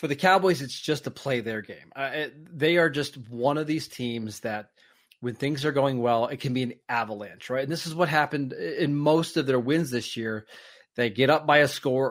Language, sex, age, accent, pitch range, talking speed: English, male, 30-49, American, 130-160 Hz, 235 wpm